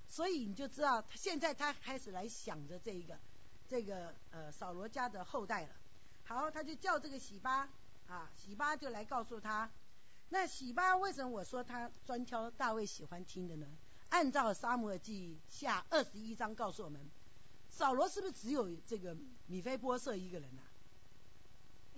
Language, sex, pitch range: Chinese, female, 190-280 Hz